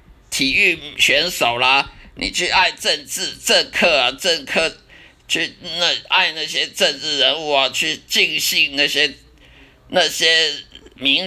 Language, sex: Chinese, male